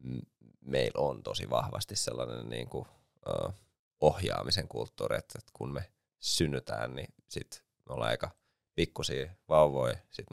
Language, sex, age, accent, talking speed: Finnish, male, 30-49, native, 120 wpm